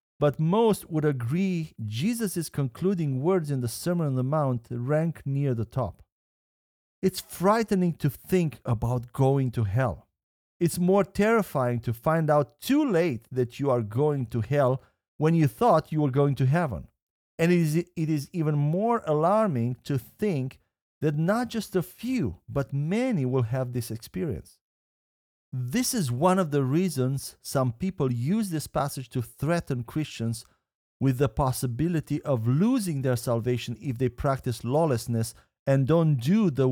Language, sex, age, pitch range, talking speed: English, male, 50-69, 125-175 Hz, 155 wpm